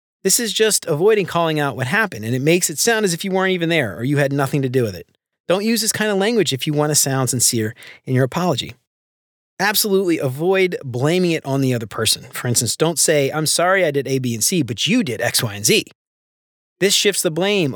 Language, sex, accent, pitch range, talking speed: English, male, American, 130-180 Hz, 245 wpm